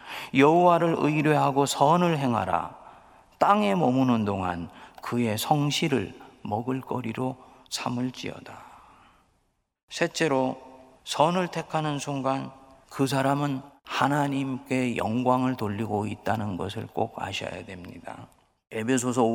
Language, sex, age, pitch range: Korean, male, 40-59, 110-155 Hz